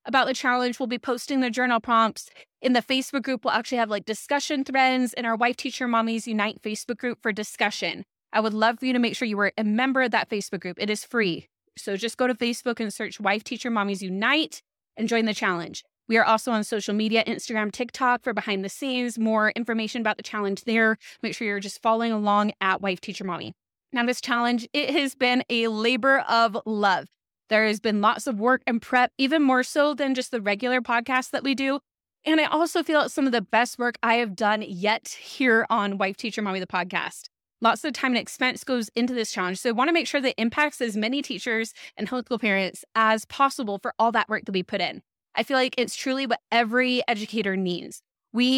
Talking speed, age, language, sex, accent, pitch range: 230 wpm, 20-39, English, female, American, 215-255 Hz